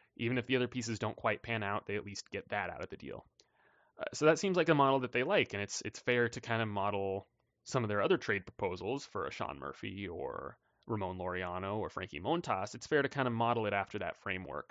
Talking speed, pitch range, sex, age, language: 255 wpm, 100-130 Hz, male, 20-39, English